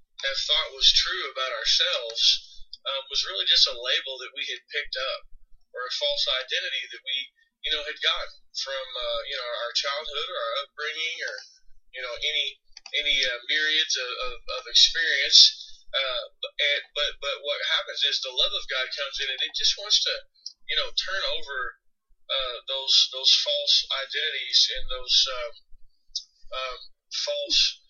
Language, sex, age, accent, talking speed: English, male, 30-49, American, 170 wpm